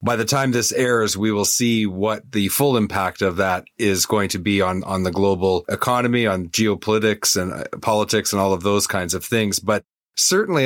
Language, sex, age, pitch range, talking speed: English, male, 30-49, 100-120 Hz, 205 wpm